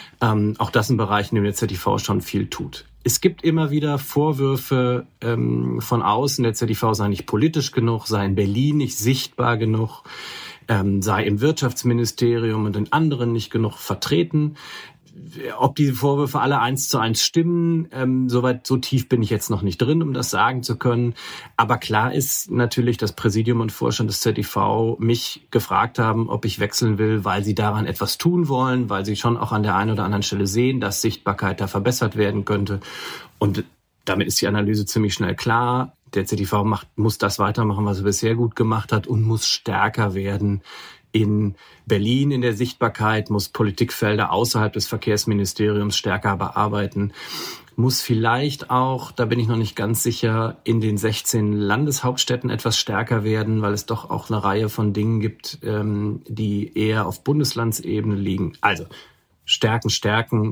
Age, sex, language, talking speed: 40-59, male, German, 175 wpm